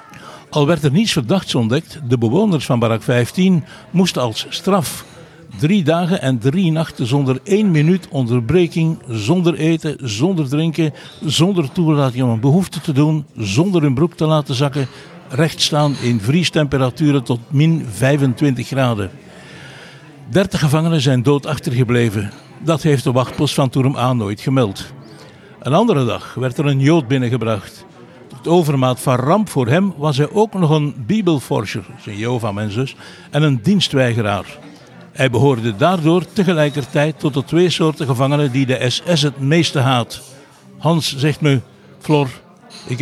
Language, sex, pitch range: Dutch, male, 130-160 Hz